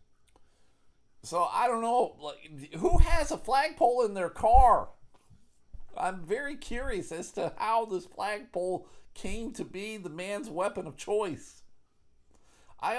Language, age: English, 50-69